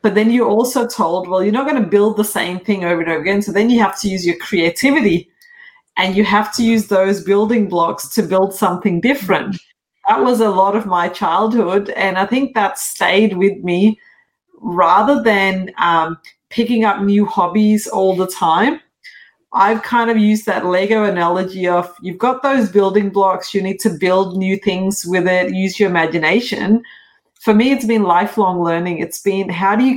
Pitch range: 180-215 Hz